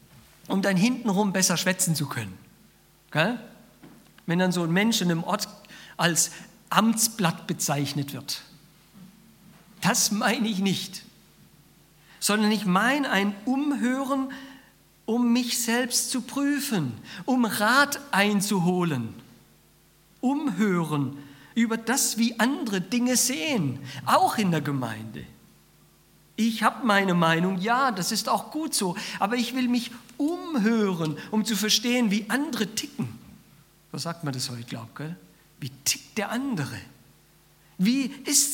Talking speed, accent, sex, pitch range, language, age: 125 wpm, German, male, 175-235 Hz, German, 50-69